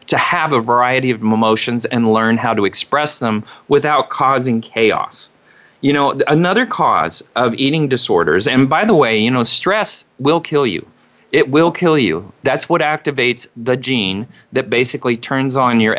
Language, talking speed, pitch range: English, 175 wpm, 120-165 Hz